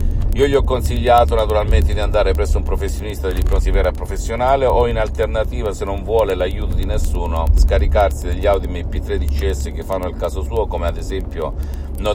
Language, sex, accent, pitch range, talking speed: Italian, male, native, 75-95 Hz, 190 wpm